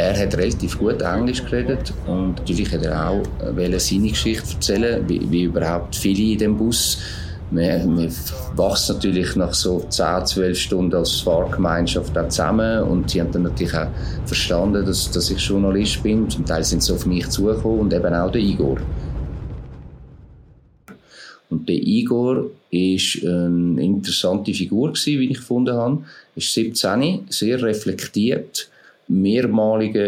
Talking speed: 150 wpm